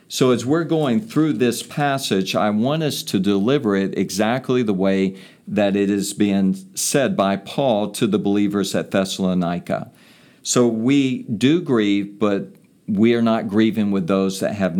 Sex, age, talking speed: male, 50-69, 165 wpm